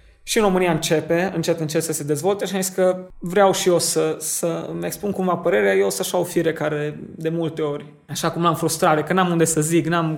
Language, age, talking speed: Romanian, 20-39, 225 wpm